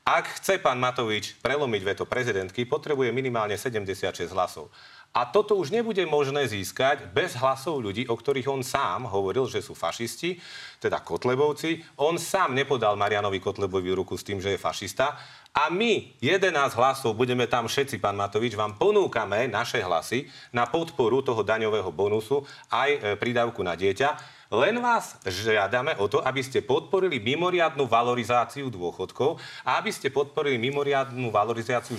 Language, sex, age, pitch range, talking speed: Slovak, male, 40-59, 115-160 Hz, 150 wpm